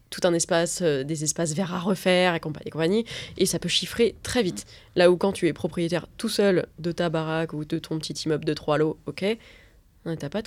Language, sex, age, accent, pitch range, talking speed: French, female, 20-39, French, 170-225 Hz, 240 wpm